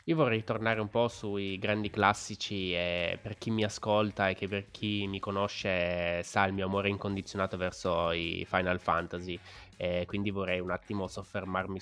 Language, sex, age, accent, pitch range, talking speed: Italian, male, 20-39, native, 95-105 Hz, 175 wpm